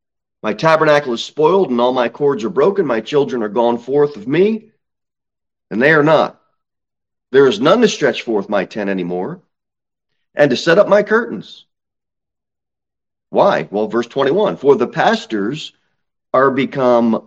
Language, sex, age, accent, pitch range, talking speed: English, male, 40-59, American, 145-205 Hz, 155 wpm